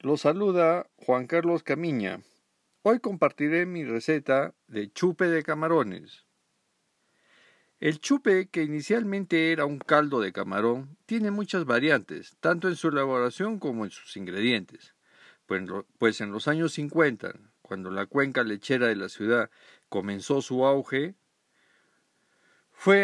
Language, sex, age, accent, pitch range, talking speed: Spanish, male, 50-69, Mexican, 125-175 Hz, 130 wpm